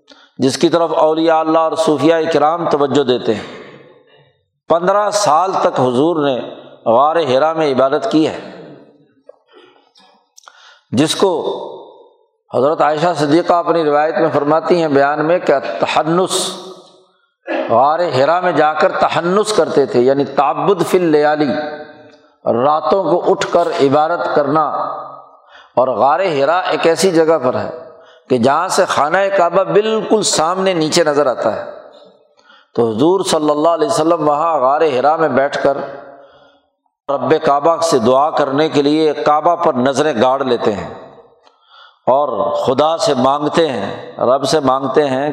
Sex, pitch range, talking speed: male, 145-185 Hz, 140 wpm